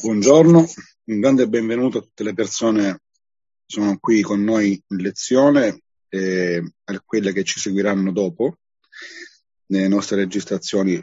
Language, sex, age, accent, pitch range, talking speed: Italian, male, 40-59, native, 95-115 Hz, 140 wpm